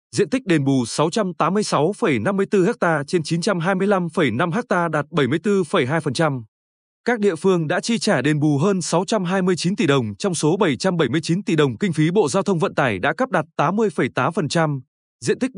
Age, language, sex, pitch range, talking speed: 20-39, Vietnamese, male, 150-200 Hz, 160 wpm